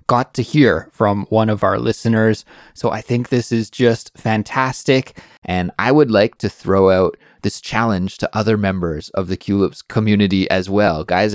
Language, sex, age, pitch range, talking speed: English, male, 20-39, 90-110 Hz, 180 wpm